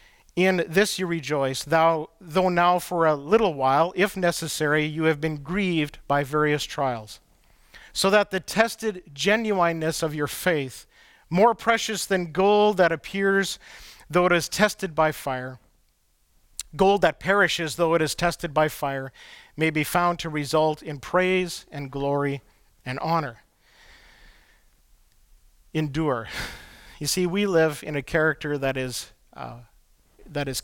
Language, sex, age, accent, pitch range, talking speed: English, male, 50-69, American, 145-185 Hz, 140 wpm